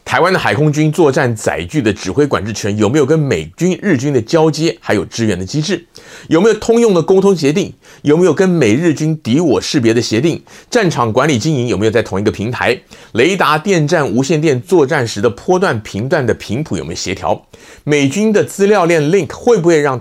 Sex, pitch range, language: male, 110-185 Hz, Chinese